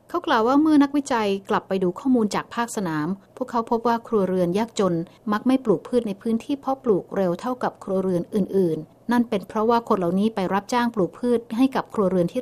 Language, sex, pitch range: Thai, female, 190-245 Hz